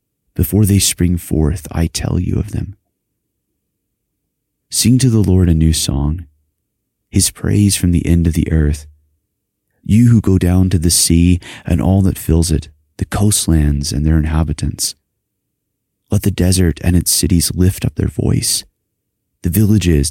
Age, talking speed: 30-49, 160 wpm